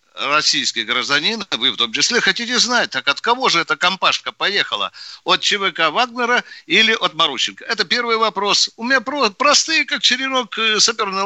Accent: native